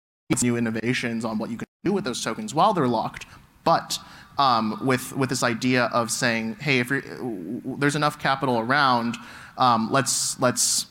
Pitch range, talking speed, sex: 115-135 Hz, 180 wpm, male